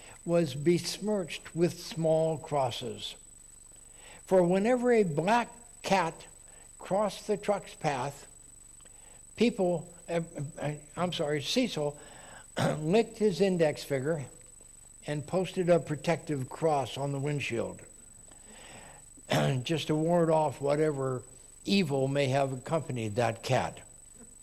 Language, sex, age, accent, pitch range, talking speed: English, male, 60-79, American, 140-195 Hz, 105 wpm